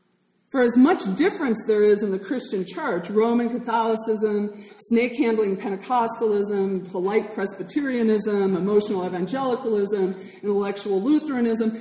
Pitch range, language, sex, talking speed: 205-255 Hz, English, female, 100 wpm